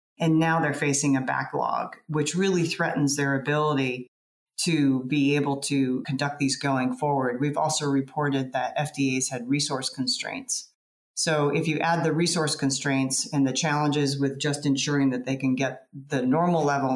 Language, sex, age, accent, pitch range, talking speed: English, female, 30-49, American, 135-160 Hz, 165 wpm